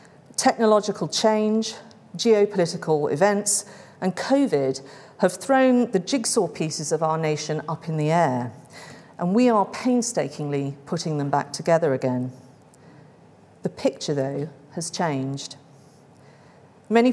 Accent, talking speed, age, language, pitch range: British, 115 wpm, 40-59, English, 145-200 Hz